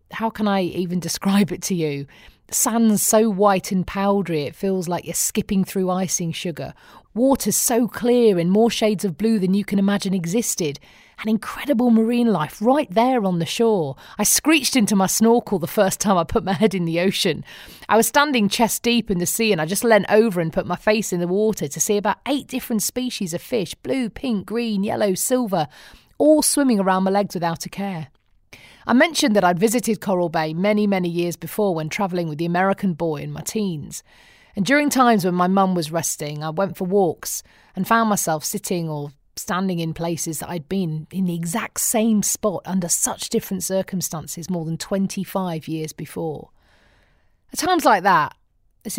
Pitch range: 170-220 Hz